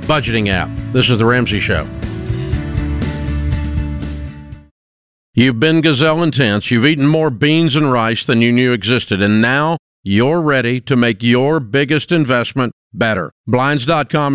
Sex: male